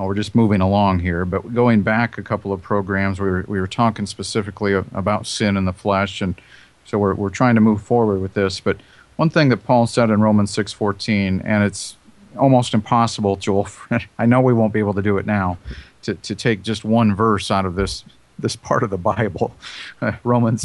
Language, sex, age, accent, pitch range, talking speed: English, male, 40-59, American, 100-125 Hz, 210 wpm